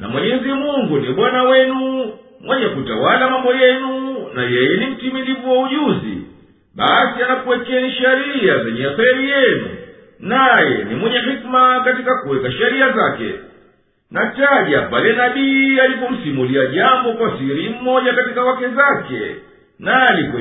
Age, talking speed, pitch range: 50-69, 130 wpm, 245-265 Hz